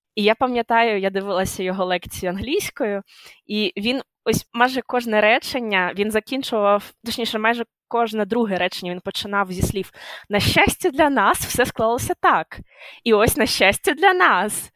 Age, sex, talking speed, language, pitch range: 20-39, female, 155 wpm, Ukrainian, 195-235 Hz